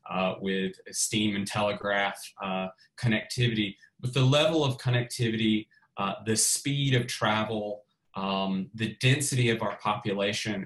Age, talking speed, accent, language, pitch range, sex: 20-39, 130 wpm, American, English, 100-125 Hz, male